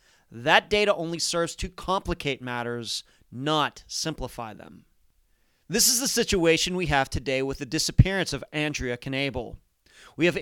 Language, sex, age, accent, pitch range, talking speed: English, male, 40-59, American, 140-185 Hz, 145 wpm